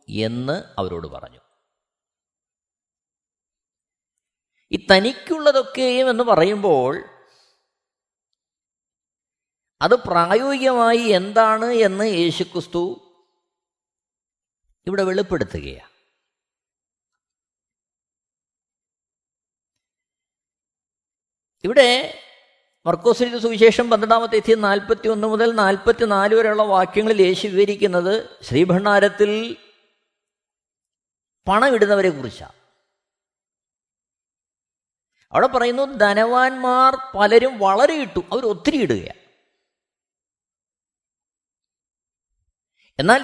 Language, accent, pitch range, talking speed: Malayalam, native, 195-265 Hz, 60 wpm